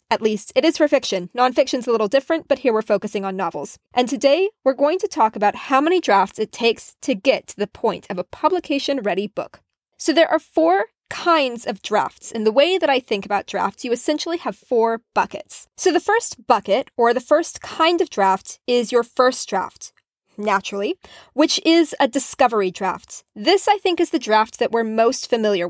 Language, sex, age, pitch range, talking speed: English, female, 20-39, 210-310 Hz, 205 wpm